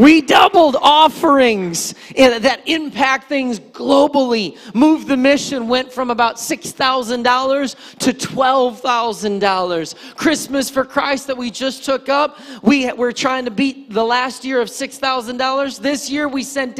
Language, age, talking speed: English, 30-49, 135 wpm